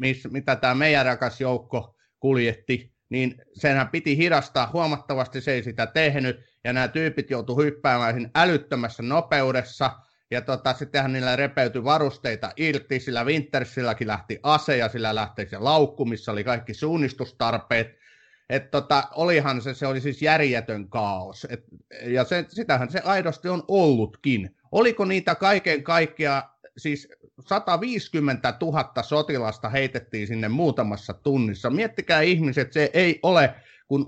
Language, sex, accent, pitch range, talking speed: Finnish, male, native, 120-150 Hz, 135 wpm